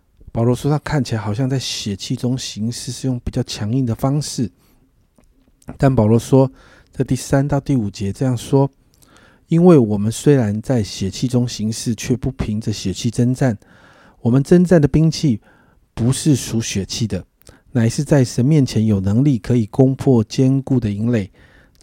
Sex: male